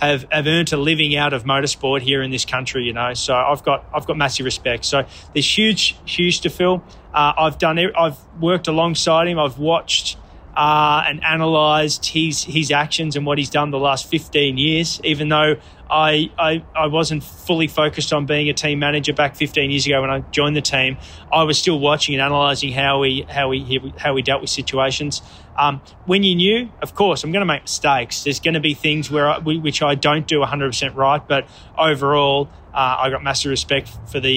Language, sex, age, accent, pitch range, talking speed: English, male, 20-39, Australian, 135-165 Hz, 210 wpm